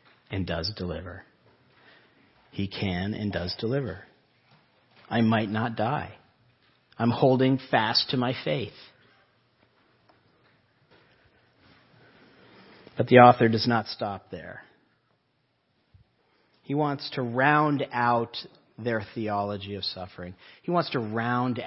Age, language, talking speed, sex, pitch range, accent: 40-59, English, 105 wpm, male, 95-125 Hz, American